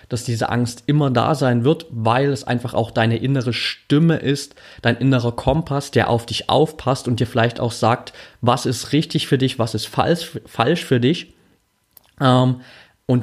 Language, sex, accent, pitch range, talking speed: German, male, German, 115-135 Hz, 175 wpm